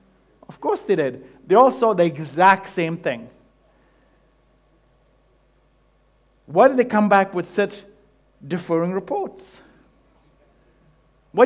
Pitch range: 155-220 Hz